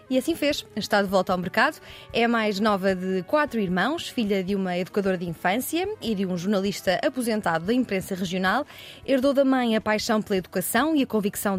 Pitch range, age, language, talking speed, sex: 195-250 Hz, 20-39, Portuguese, 195 wpm, female